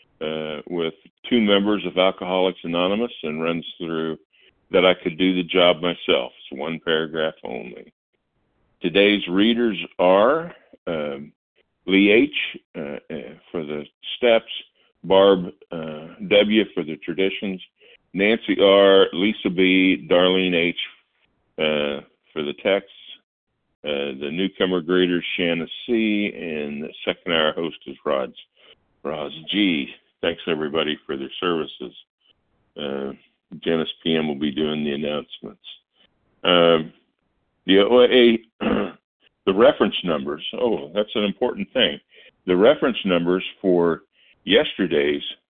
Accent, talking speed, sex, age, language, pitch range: American, 120 wpm, male, 50-69, English, 80-95 Hz